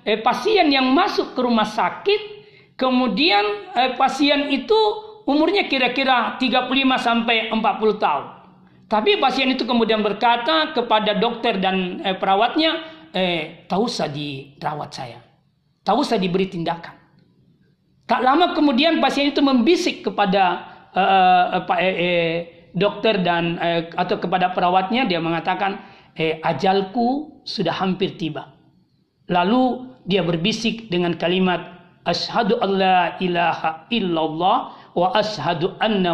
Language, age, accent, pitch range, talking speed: Indonesian, 40-59, native, 180-280 Hz, 120 wpm